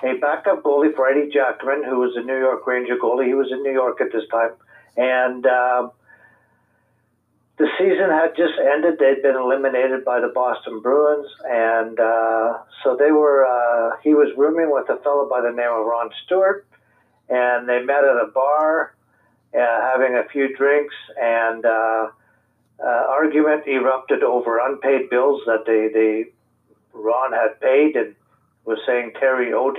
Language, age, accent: English, 60-79, American